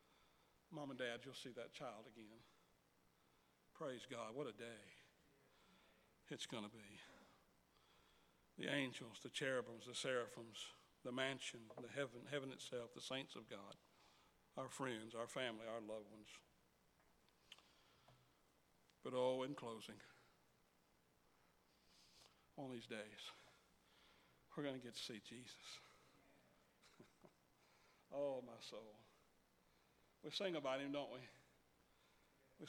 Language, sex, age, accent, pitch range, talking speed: English, male, 60-79, American, 115-145 Hz, 115 wpm